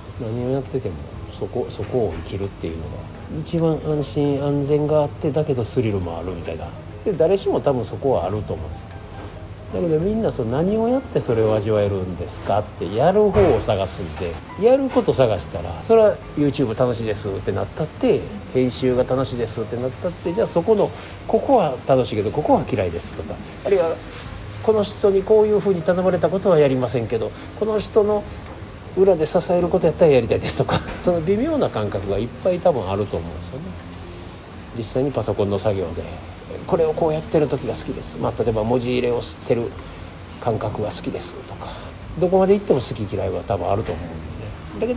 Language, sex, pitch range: Japanese, male, 100-160 Hz